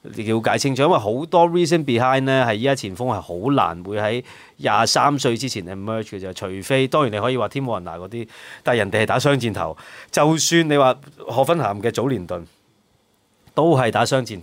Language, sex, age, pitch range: Chinese, male, 30-49, 100-140 Hz